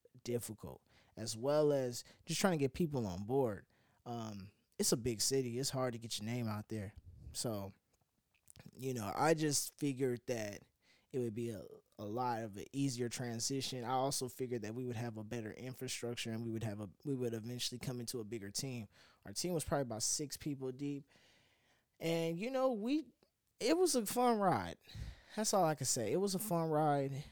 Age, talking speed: 20-39, 200 wpm